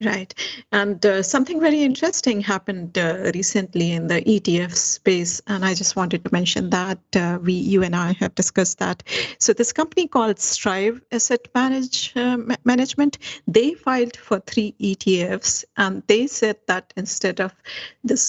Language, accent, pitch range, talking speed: English, Indian, 180-230 Hz, 160 wpm